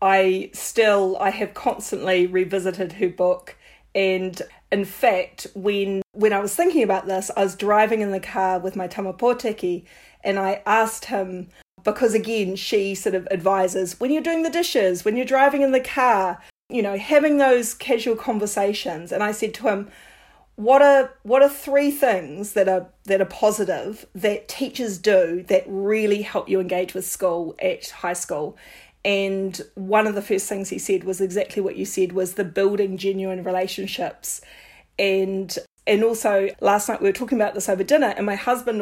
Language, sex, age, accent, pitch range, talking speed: English, female, 40-59, Australian, 190-230 Hz, 180 wpm